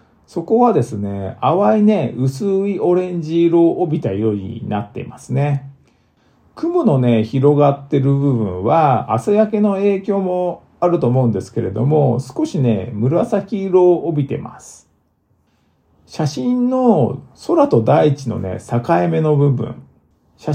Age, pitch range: 50-69, 115-170 Hz